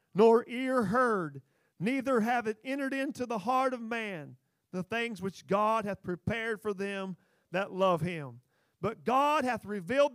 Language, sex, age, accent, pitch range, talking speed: English, male, 40-59, American, 205-270 Hz, 160 wpm